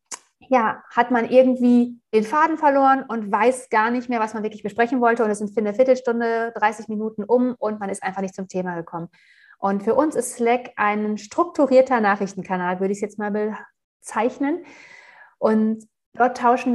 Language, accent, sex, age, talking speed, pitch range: German, German, female, 30-49, 185 wpm, 205-250 Hz